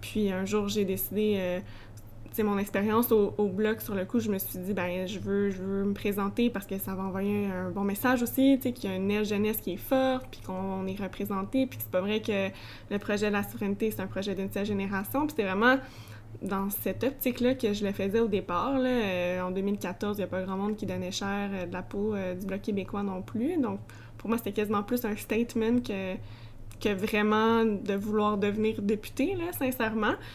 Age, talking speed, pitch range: 20-39, 230 wpm, 185-215 Hz